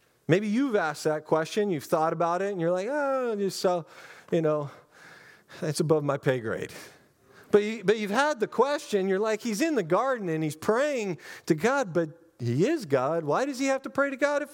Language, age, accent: English, 40-59, American